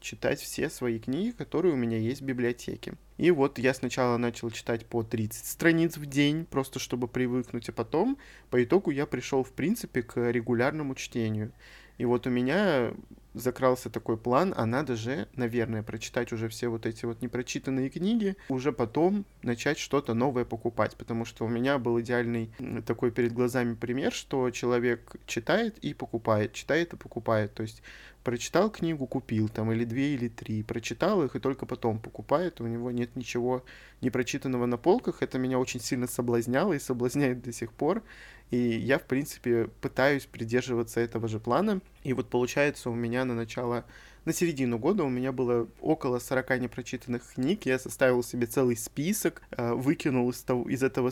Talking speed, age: 175 wpm, 20-39